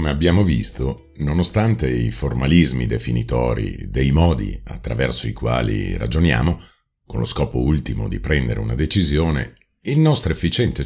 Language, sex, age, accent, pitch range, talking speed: Italian, male, 50-69, native, 70-105 Hz, 135 wpm